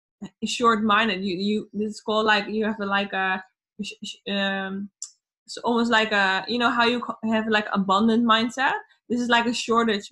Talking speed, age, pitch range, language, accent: 170 wpm, 20-39, 205-235 Hz, Dutch, Dutch